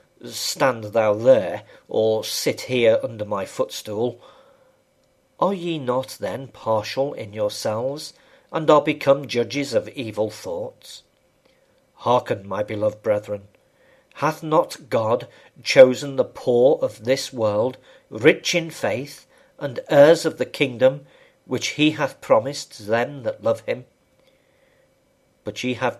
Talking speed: 125 wpm